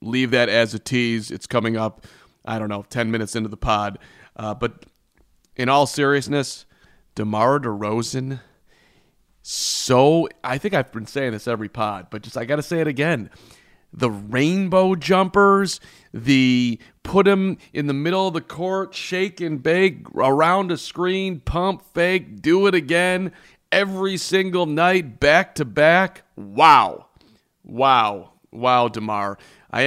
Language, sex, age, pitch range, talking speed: English, male, 40-59, 115-165 Hz, 150 wpm